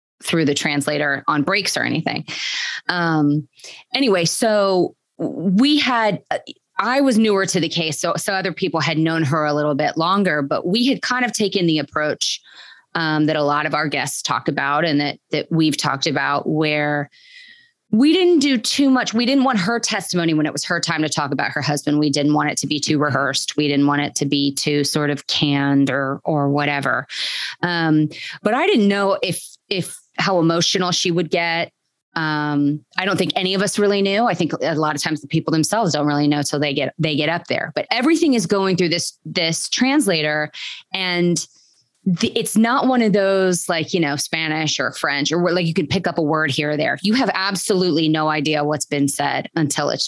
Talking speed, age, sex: 210 wpm, 30-49, female